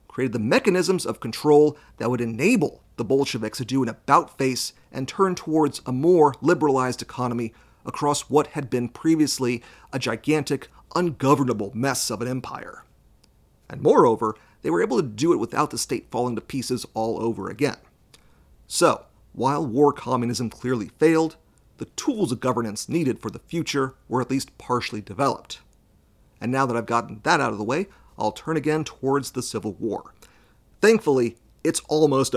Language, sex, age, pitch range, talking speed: English, male, 40-59, 115-145 Hz, 165 wpm